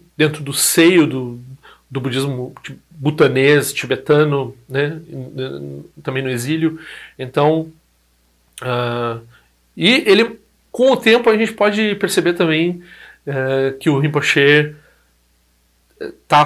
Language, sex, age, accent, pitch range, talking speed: Portuguese, male, 40-59, Brazilian, 130-160 Hz, 105 wpm